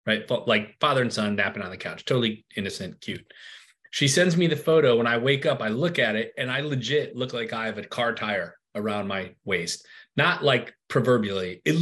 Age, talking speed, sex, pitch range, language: 30-49, 215 wpm, male, 120-165 Hz, English